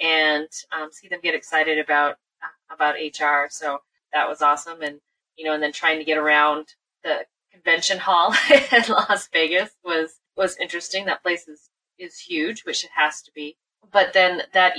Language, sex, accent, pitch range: English, female, American, 155-195 Hz